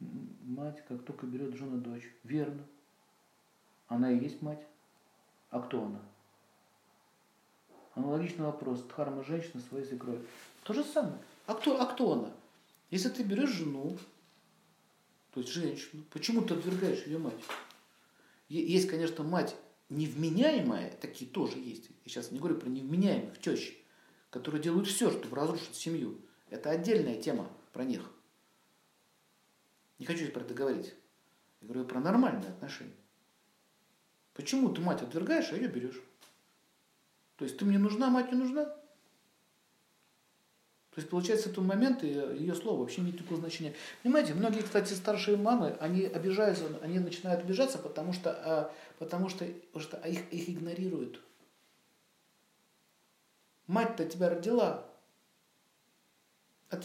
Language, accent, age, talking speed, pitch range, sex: Russian, native, 50-69, 130 wpm, 145-215 Hz, male